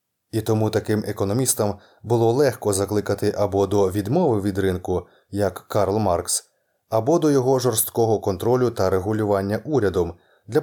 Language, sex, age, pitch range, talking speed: Ukrainian, male, 20-39, 100-125 Hz, 135 wpm